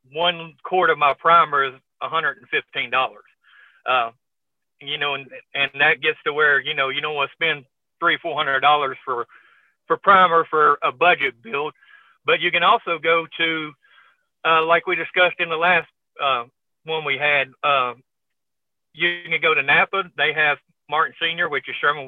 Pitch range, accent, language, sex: 140-175 Hz, American, English, male